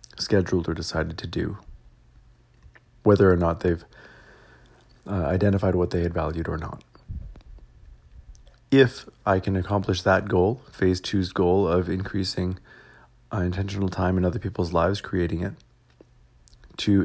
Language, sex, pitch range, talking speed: English, male, 85-105 Hz, 130 wpm